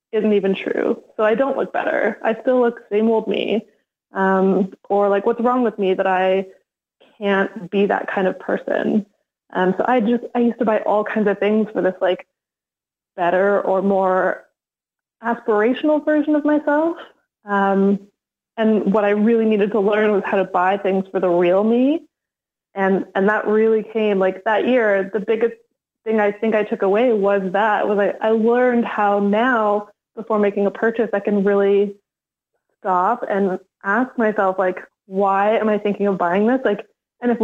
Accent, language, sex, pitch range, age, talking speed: American, English, female, 200-235 Hz, 20-39, 185 wpm